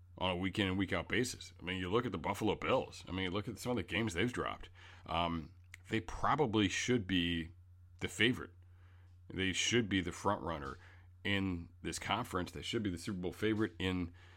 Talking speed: 210 wpm